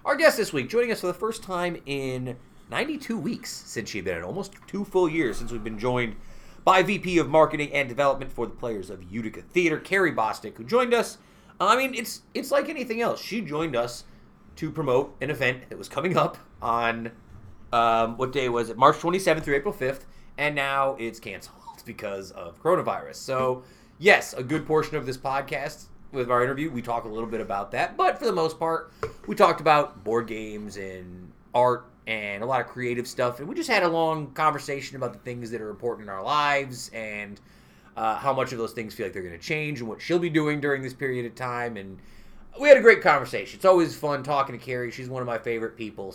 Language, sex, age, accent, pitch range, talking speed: English, male, 30-49, American, 115-165 Hz, 225 wpm